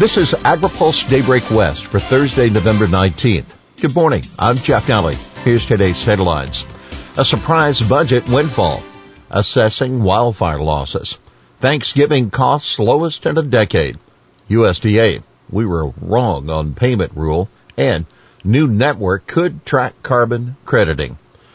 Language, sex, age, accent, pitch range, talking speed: English, male, 60-79, American, 95-125 Hz, 125 wpm